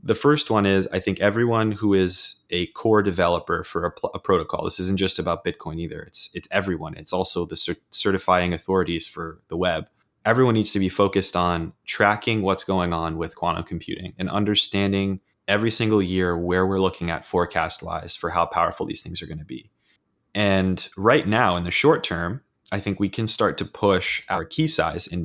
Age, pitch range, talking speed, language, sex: 20-39, 90-105 Hz, 200 wpm, English, male